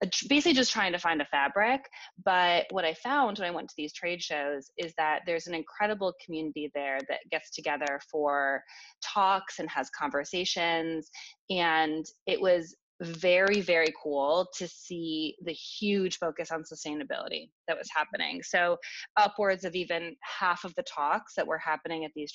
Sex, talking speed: female, 165 wpm